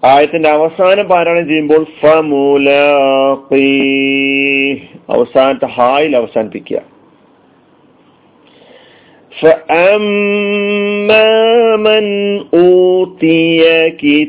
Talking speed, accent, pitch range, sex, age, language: 50 wpm, native, 140-185 Hz, male, 40-59, Malayalam